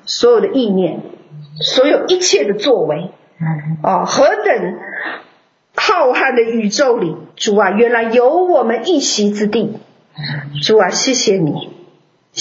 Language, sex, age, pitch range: Chinese, female, 50-69, 195-290 Hz